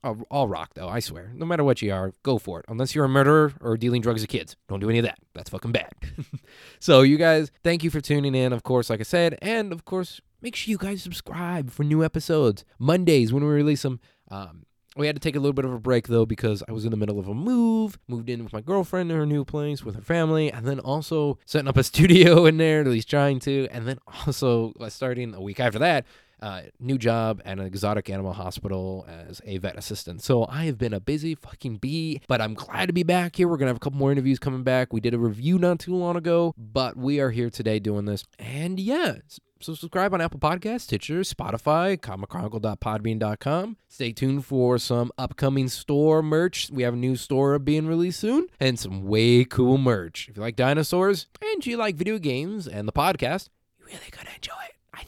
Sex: male